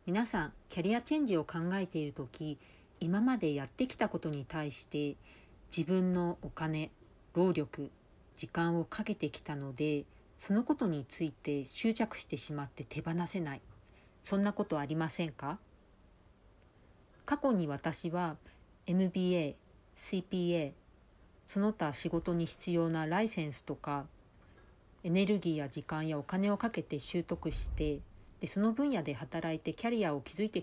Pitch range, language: 145-190 Hz, Japanese